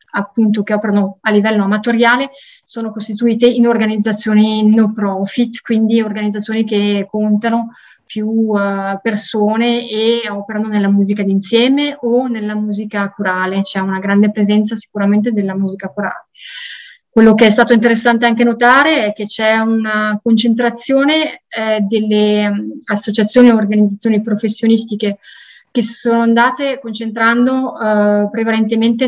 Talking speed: 125 wpm